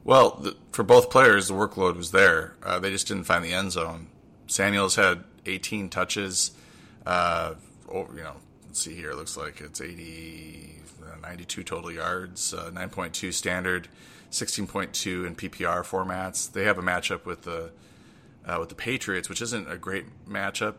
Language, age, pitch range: English, 30-49, 85-95 Hz